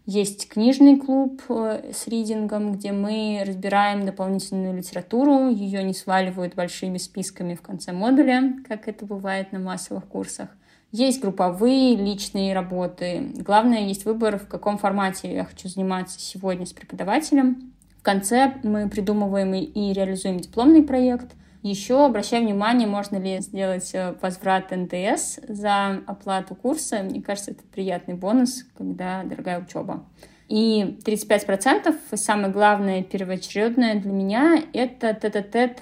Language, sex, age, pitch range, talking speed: Russian, female, 20-39, 190-240 Hz, 130 wpm